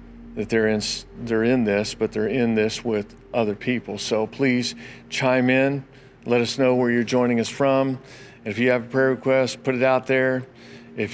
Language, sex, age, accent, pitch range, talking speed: English, male, 50-69, American, 110-130 Hz, 195 wpm